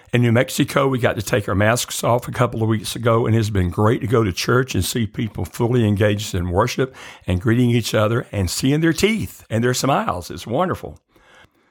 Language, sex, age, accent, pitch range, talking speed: English, male, 60-79, American, 100-125 Hz, 220 wpm